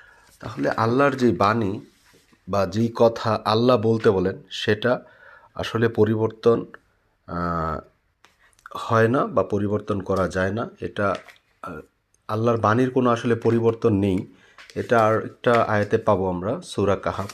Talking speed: 120 wpm